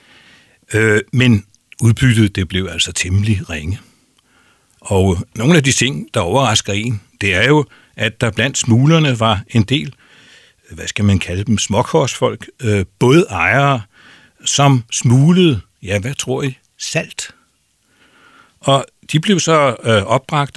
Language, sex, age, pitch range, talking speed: Danish, male, 60-79, 100-135 Hz, 130 wpm